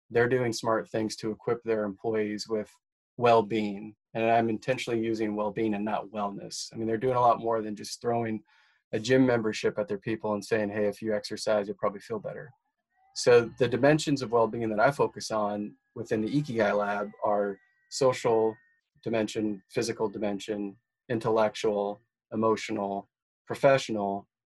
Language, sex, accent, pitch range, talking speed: English, male, American, 105-125 Hz, 160 wpm